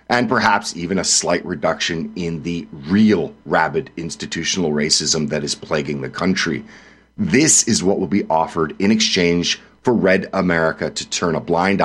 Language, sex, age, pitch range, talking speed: English, male, 40-59, 85-110 Hz, 160 wpm